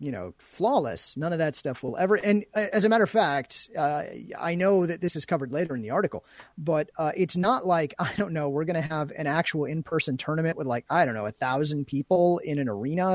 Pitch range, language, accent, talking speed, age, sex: 140-185 Hz, English, American, 240 wpm, 30-49, male